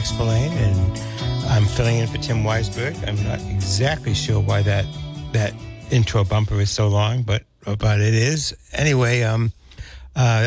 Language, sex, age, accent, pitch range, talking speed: English, male, 60-79, American, 100-120 Hz, 155 wpm